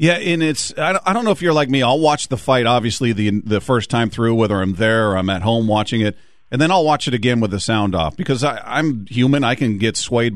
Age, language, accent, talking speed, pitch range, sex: 40-59, English, American, 265 wpm, 110-135 Hz, male